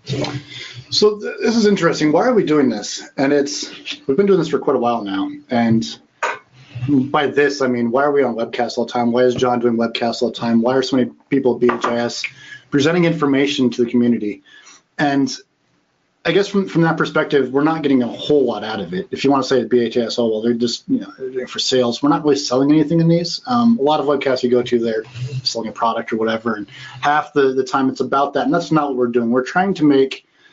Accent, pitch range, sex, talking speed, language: American, 125-150 Hz, male, 240 wpm, English